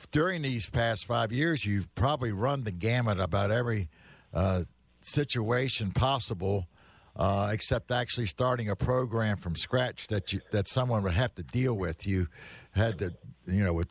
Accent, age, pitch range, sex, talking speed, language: American, 60-79, 95-120 Hz, male, 165 wpm, English